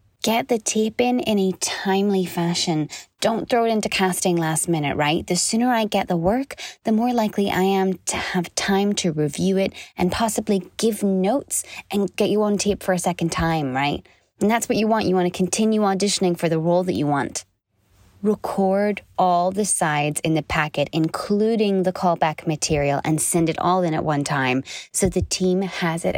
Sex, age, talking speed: female, 20-39, 200 wpm